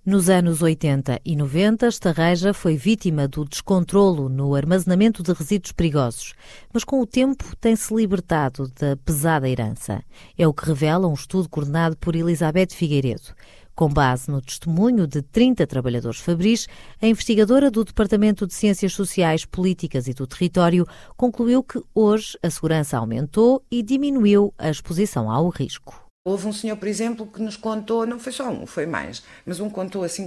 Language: Portuguese